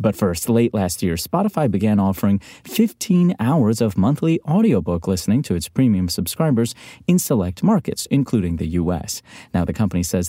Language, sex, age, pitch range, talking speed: English, male, 30-49, 95-135 Hz, 165 wpm